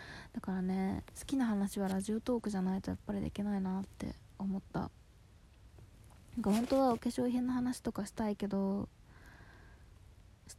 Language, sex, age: Japanese, female, 20-39